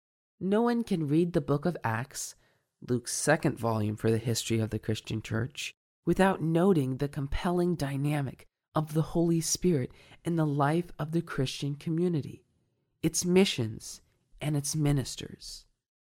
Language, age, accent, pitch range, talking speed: English, 40-59, American, 120-170 Hz, 145 wpm